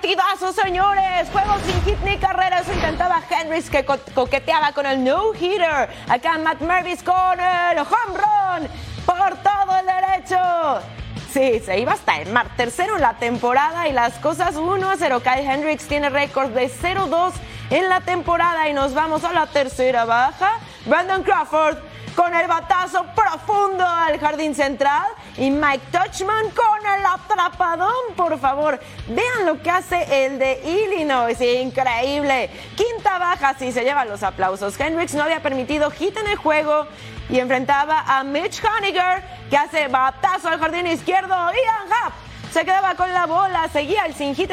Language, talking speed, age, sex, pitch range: Spanish, 160 wpm, 30-49, female, 280-375 Hz